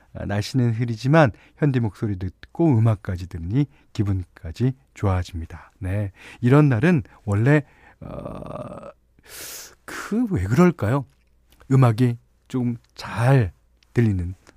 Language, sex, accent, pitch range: Korean, male, native, 100-145 Hz